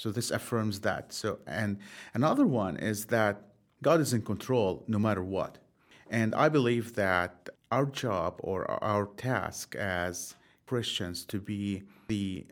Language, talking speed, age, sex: English, 145 wpm, 40-59, male